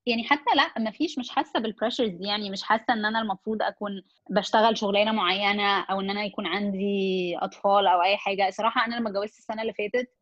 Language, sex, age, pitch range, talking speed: Arabic, female, 20-39, 200-240 Hz, 205 wpm